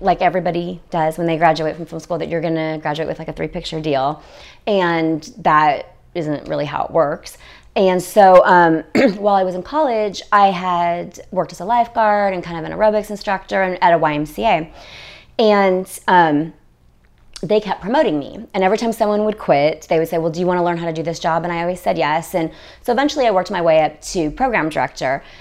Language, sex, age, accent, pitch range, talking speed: English, female, 30-49, American, 155-195 Hz, 215 wpm